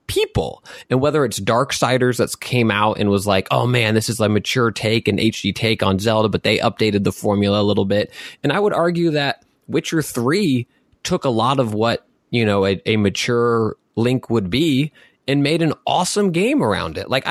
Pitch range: 100-135 Hz